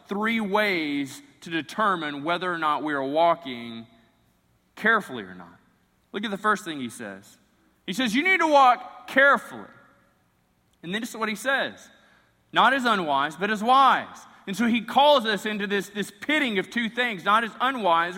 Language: English